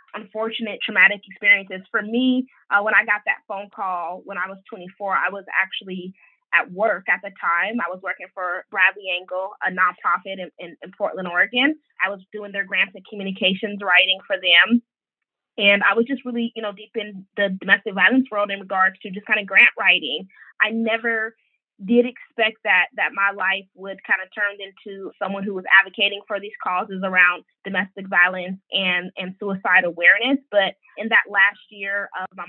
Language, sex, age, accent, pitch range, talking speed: English, female, 20-39, American, 185-215 Hz, 190 wpm